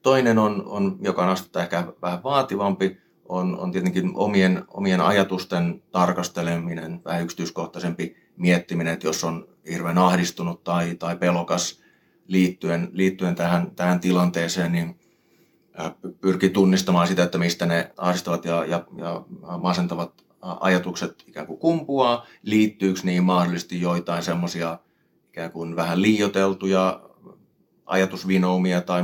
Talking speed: 115 wpm